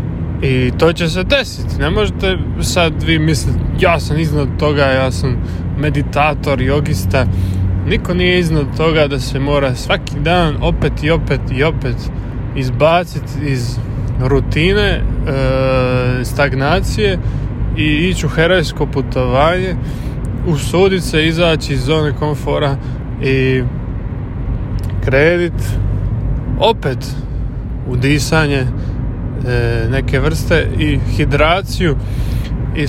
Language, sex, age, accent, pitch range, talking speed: Croatian, male, 20-39, Serbian, 120-150 Hz, 100 wpm